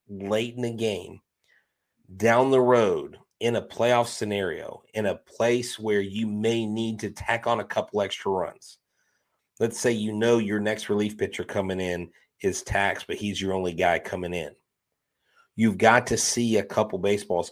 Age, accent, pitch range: 30-49, American, 95-115 Hz